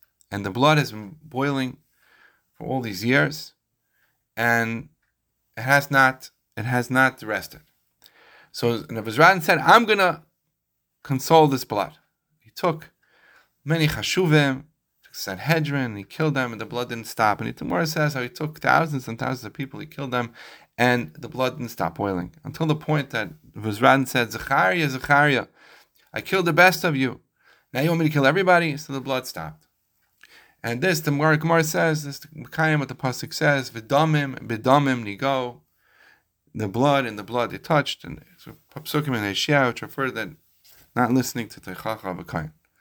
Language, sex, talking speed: English, male, 170 wpm